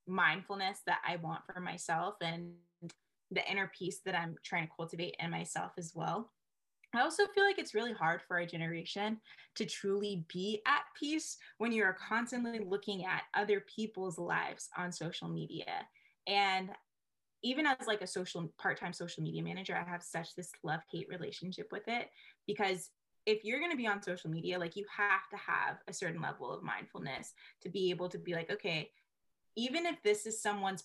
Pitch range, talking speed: 175-210 Hz, 185 wpm